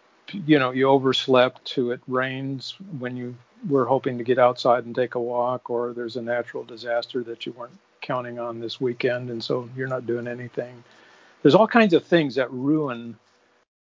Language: English